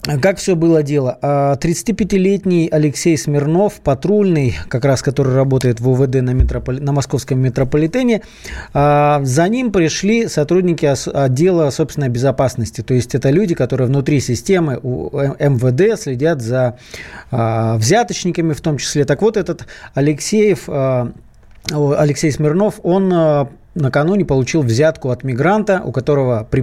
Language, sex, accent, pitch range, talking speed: Russian, male, native, 130-165 Hz, 120 wpm